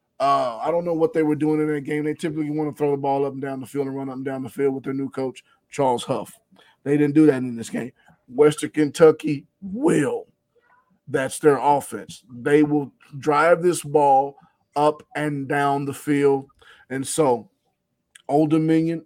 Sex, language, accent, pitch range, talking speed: male, English, American, 135-155 Hz, 200 wpm